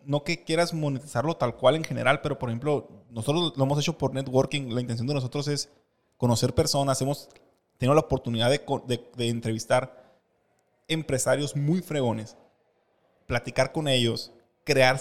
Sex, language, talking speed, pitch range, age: male, English, 155 wpm, 130-155 Hz, 20-39